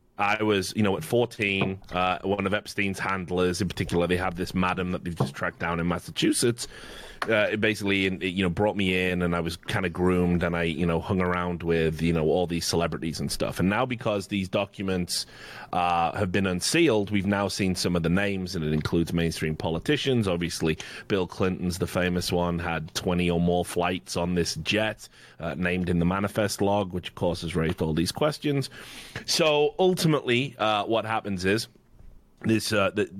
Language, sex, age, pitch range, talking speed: English, male, 30-49, 85-115 Hz, 200 wpm